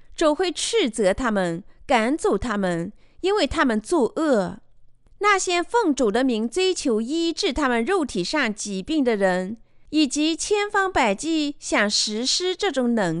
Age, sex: 30-49, female